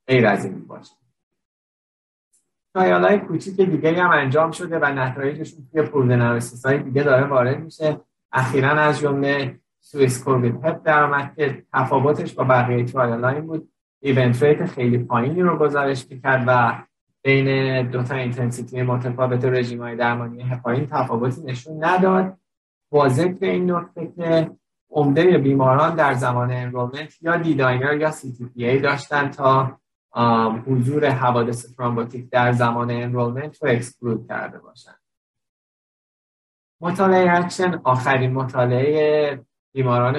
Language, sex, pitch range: Persian, male, 120-150 Hz